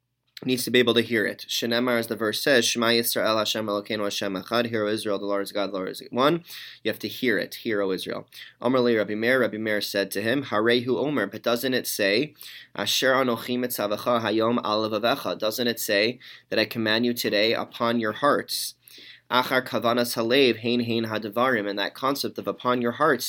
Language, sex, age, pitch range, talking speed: English, male, 20-39, 110-125 Hz, 200 wpm